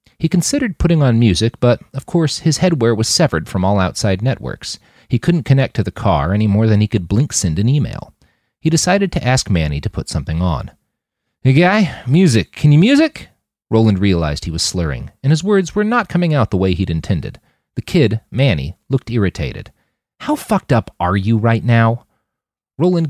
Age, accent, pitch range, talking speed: 40-59, American, 95-155 Hz, 190 wpm